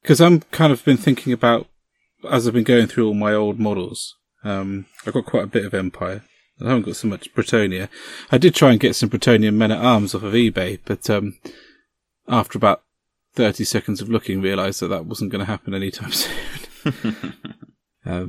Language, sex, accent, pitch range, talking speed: English, male, British, 105-130 Hz, 195 wpm